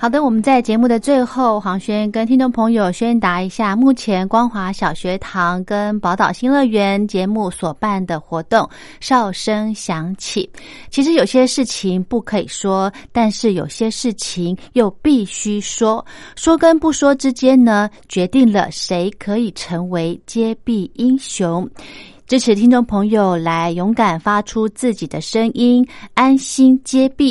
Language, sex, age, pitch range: Chinese, female, 30-49, 190-245 Hz